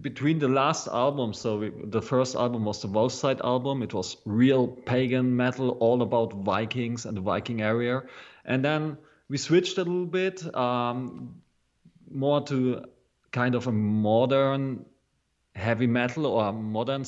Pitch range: 110-130 Hz